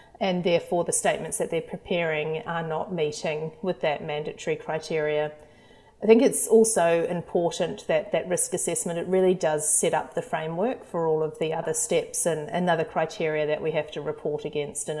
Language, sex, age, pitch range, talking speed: English, female, 30-49, 150-185 Hz, 185 wpm